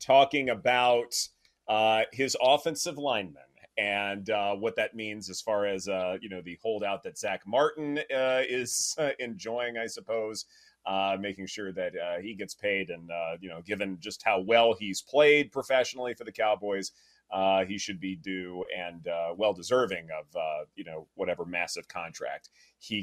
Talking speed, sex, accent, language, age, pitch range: 170 wpm, male, American, English, 30-49, 100-135 Hz